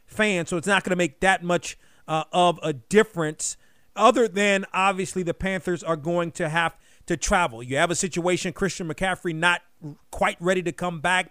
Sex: male